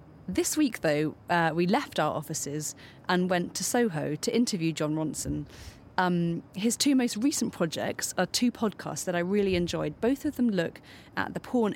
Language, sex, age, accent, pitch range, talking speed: English, female, 30-49, British, 160-210 Hz, 185 wpm